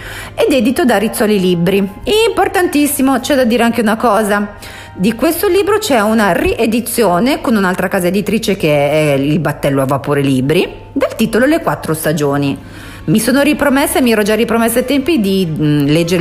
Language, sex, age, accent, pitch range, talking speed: Italian, female, 40-59, native, 150-230 Hz, 170 wpm